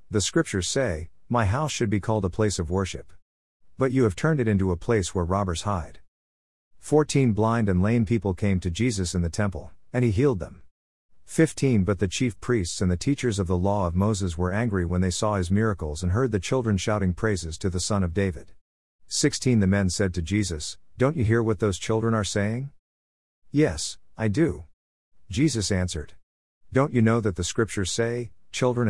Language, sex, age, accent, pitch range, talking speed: English, male, 50-69, American, 90-115 Hz, 200 wpm